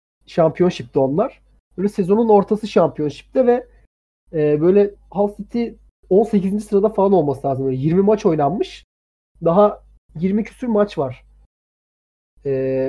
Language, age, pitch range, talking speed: Turkish, 30-49, 140-220 Hz, 115 wpm